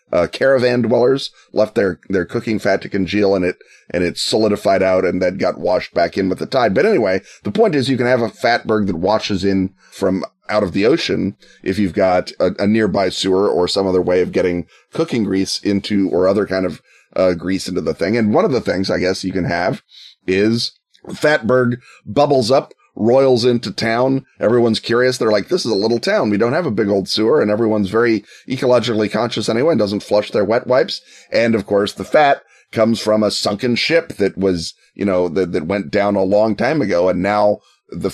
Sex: male